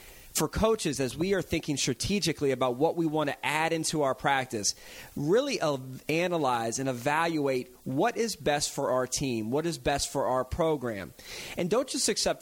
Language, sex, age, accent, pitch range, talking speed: English, male, 30-49, American, 125-165 Hz, 175 wpm